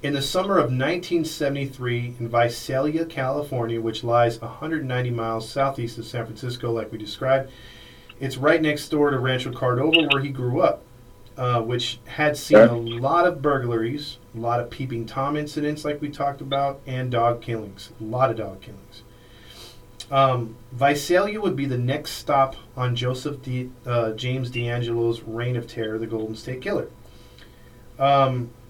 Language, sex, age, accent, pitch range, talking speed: English, male, 40-59, American, 120-140 Hz, 160 wpm